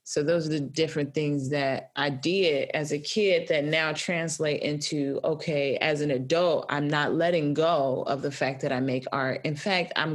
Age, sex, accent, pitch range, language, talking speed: 20-39, female, American, 145-175 Hz, English, 200 wpm